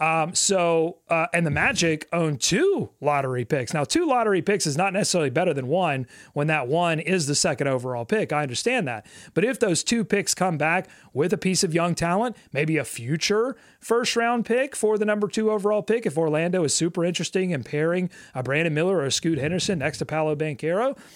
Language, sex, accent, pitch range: English, male, American, 150-205 Hz